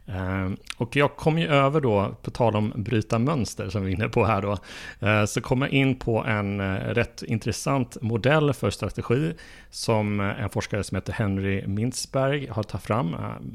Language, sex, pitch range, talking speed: Swedish, male, 100-125 Hz, 170 wpm